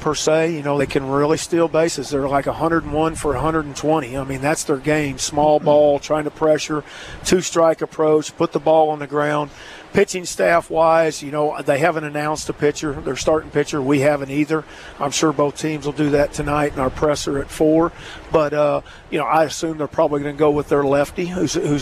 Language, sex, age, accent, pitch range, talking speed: English, male, 40-59, American, 145-160 Hz, 205 wpm